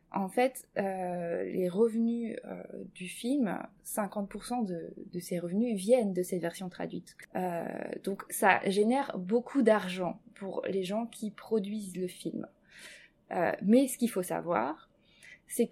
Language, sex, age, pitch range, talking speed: French, female, 20-39, 195-255 Hz, 145 wpm